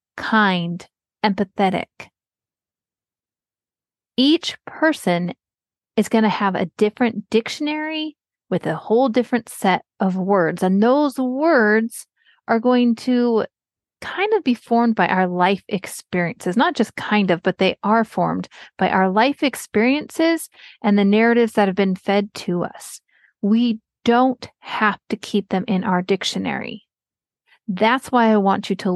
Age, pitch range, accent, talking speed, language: 30-49, 190-245 Hz, American, 140 wpm, English